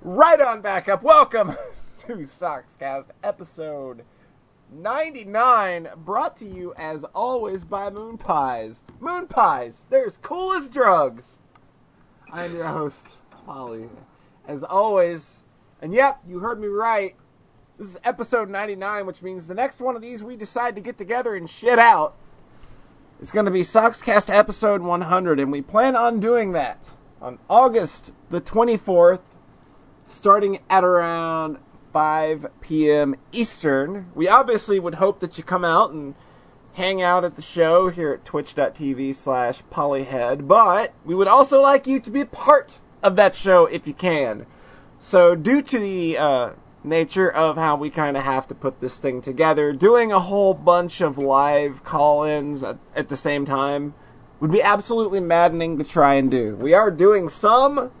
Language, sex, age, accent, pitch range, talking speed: English, male, 30-49, American, 150-220 Hz, 155 wpm